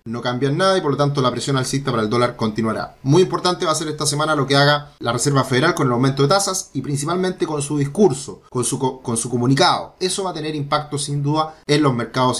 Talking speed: 245 wpm